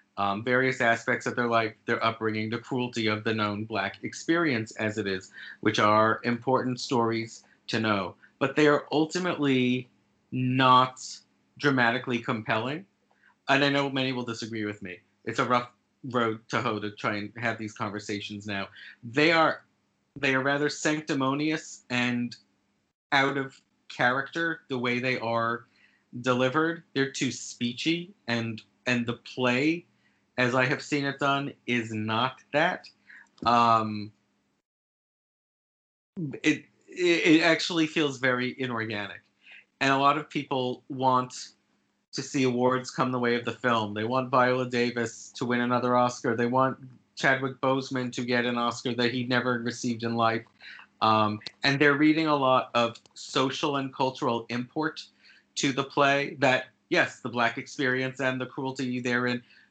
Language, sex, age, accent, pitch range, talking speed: English, male, 30-49, American, 115-135 Hz, 150 wpm